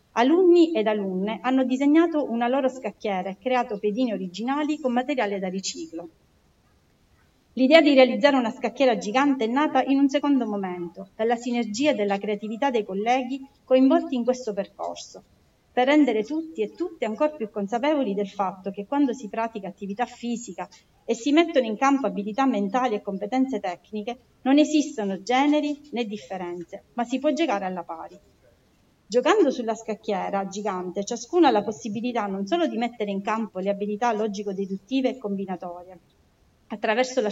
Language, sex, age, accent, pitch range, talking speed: Italian, female, 40-59, native, 205-265 Hz, 155 wpm